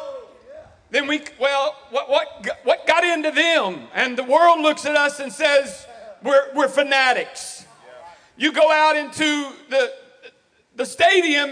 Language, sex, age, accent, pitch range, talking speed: English, male, 50-69, American, 275-320 Hz, 140 wpm